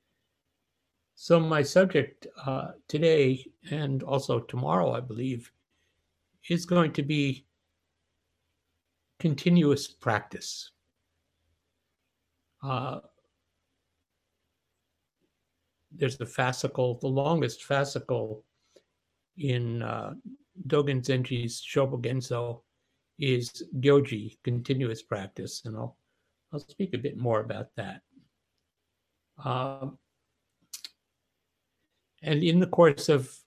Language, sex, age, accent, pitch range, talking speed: English, male, 60-79, American, 110-150 Hz, 85 wpm